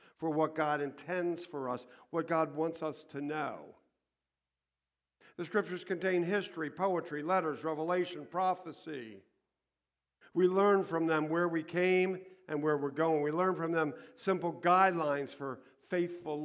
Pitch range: 120-165 Hz